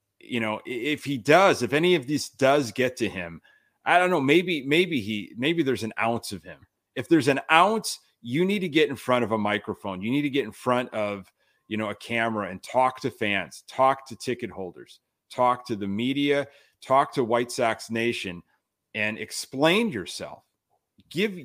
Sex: male